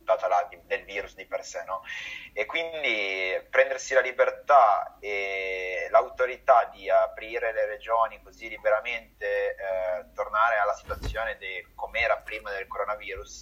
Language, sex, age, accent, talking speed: Italian, male, 30-49, native, 125 wpm